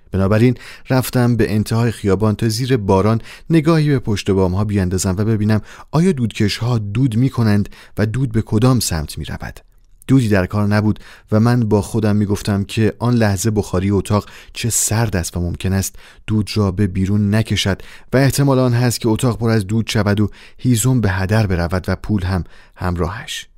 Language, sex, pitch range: Persian, male, 95-120 Hz